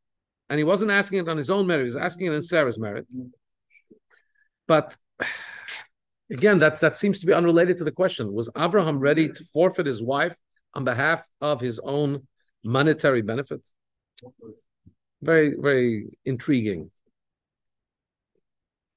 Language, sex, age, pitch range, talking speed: English, male, 50-69, 150-215 Hz, 140 wpm